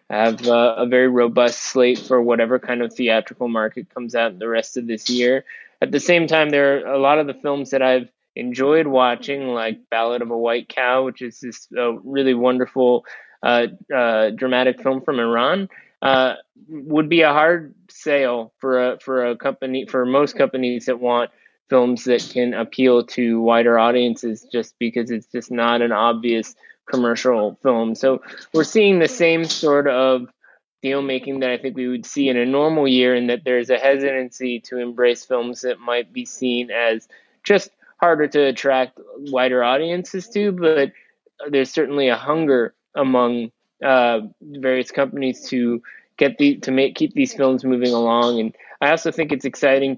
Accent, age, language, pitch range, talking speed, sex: American, 20-39, English, 120-140 Hz, 175 wpm, male